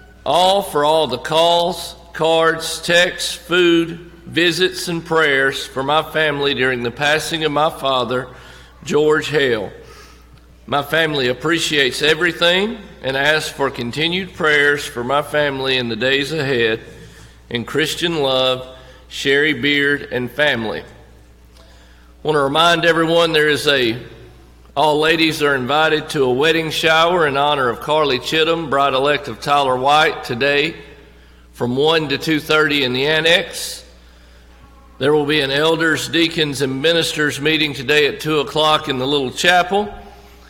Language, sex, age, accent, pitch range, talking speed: English, male, 50-69, American, 130-160 Hz, 140 wpm